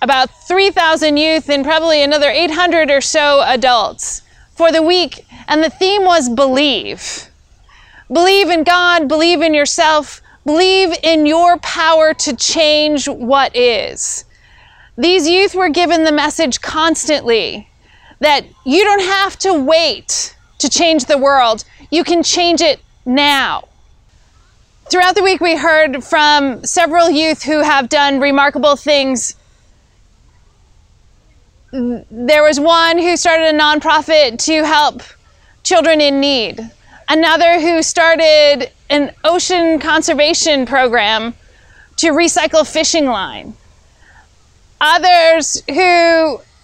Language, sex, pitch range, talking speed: English, female, 290-340 Hz, 120 wpm